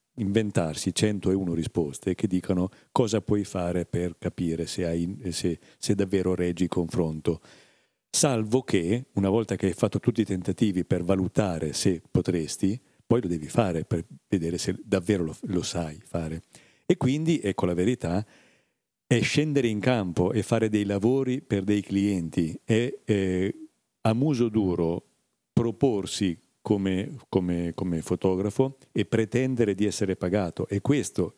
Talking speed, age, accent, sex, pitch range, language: 145 wpm, 50-69, native, male, 90-115 Hz, Italian